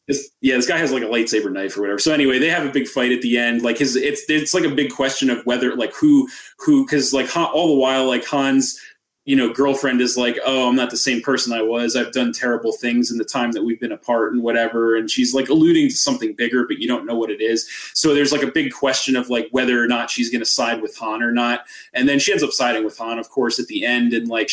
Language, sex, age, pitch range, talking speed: English, male, 20-39, 115-145 Hz, 275 wpm